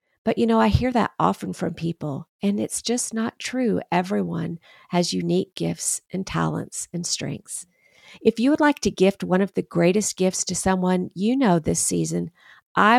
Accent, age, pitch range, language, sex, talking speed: American, 50-69, 160-210 Hz, English, female, 185 wpm